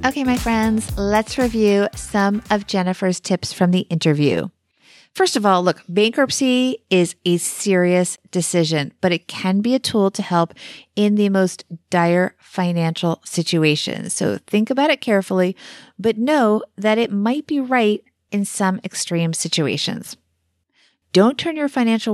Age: 30-49